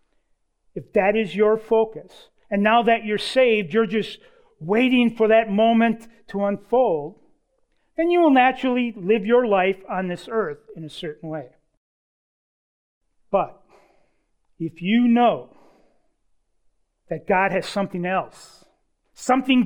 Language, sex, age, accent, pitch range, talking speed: English, male, 40-59, American, 190-265 Hz, 130 wpm